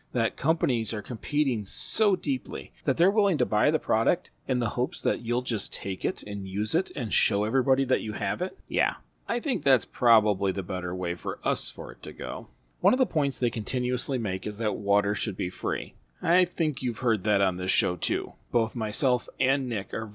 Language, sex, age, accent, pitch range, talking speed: English, male, 40-59, American, 105-155 Hz, 215 wpm